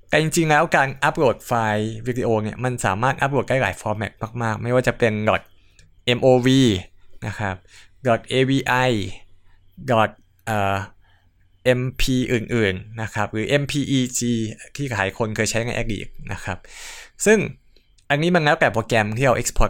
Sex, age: male, 20-39